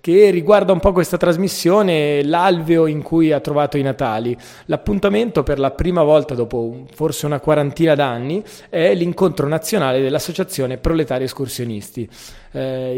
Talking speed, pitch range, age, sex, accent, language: 140 wpm, 140-180 Hz, 30-49, male, native, Italian